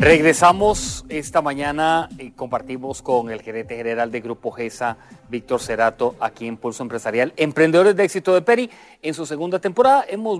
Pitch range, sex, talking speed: 130-160 Hz, male, 160 wpm